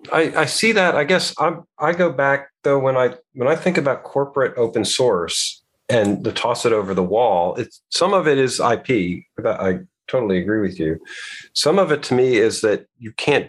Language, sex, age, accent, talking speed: English, male, 40-59, American, 215 wpm